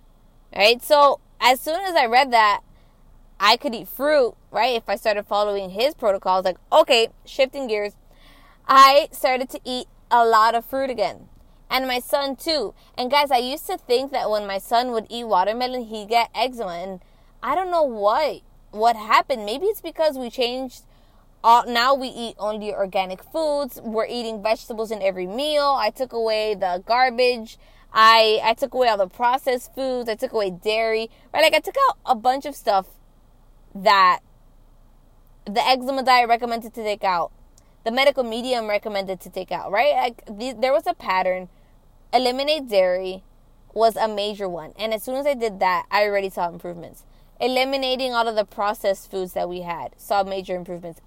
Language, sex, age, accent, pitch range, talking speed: English, female, 20-39, American, 195-260 Hz, 180 wpm